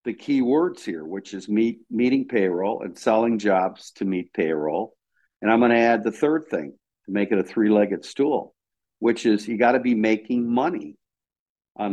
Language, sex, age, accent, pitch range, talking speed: English, male, 50-69, American, 100-120 Hz, 190 wpm